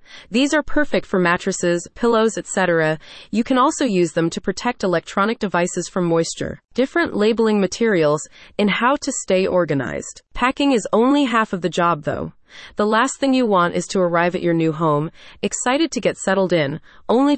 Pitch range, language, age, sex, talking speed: 175-240 Hz, English, 30-49, female, 180 wpm